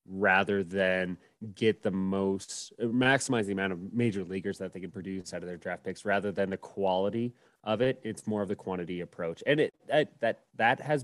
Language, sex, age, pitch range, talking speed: English, male, 30-49, 95-110 Hz, 205 wpm